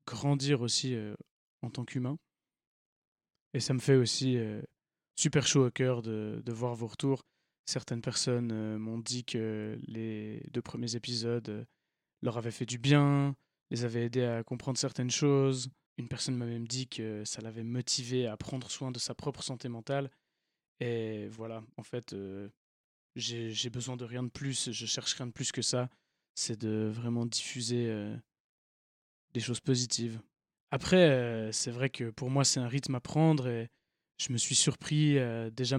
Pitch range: 115-135 Hz